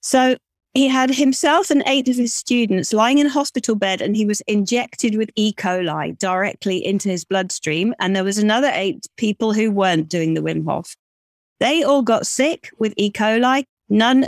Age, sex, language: 30-49, female, English